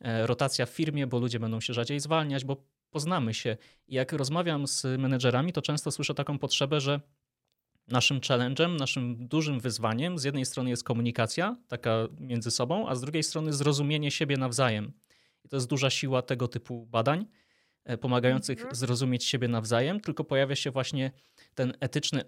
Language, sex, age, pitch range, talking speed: Polish, male, 20-39, 125-150 Hz, 165 wpm